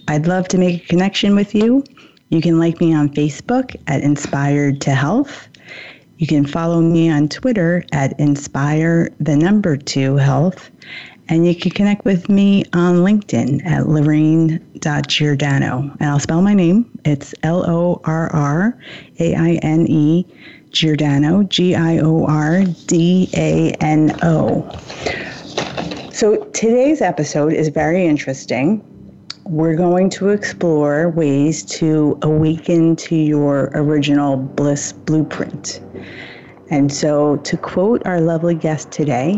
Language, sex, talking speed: English, female, 105 wpm